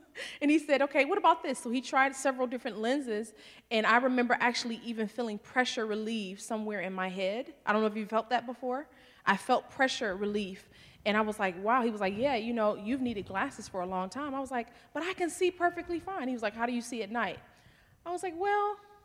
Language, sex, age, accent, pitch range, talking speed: English, female, 20-39, American, 210-255 Hz, 245 wpm